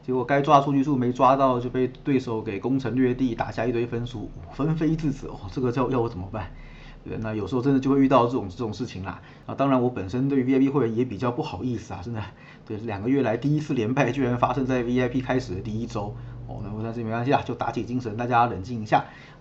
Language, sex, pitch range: Chinese, male, 115-135 Hz